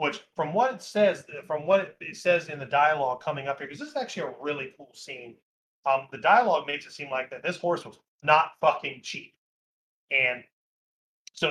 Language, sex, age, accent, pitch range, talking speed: English, male, 30-49, American, 135-175 Hz, 205 wpm